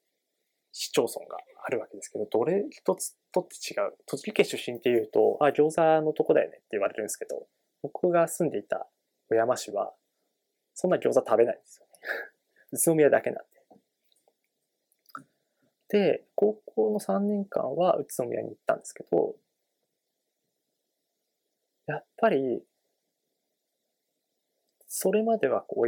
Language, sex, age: Japanese, male, 20-39